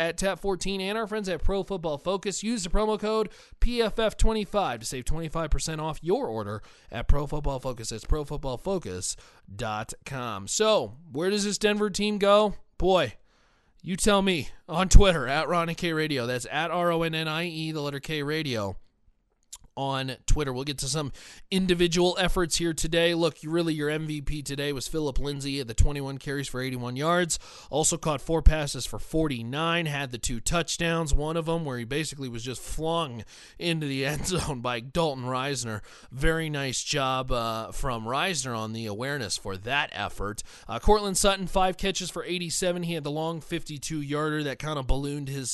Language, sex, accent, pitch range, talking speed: English, male, American, 120-165 Hz, 175 wpm